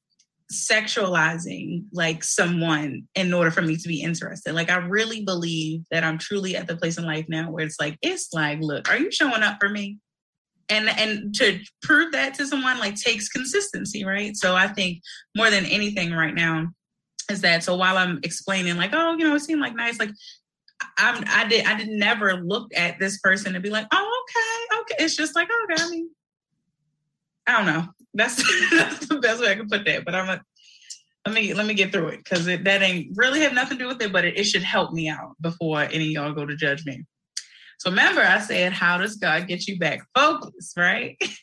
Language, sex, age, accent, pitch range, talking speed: English, female, 20-39, American, 175-235 Hz, 220 wpm